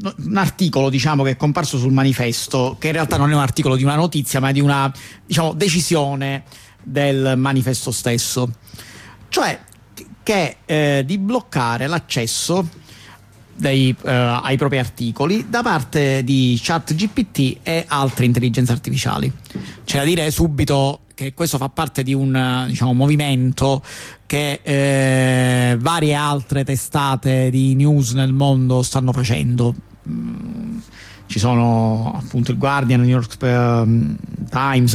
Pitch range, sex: 125-155 Hz, male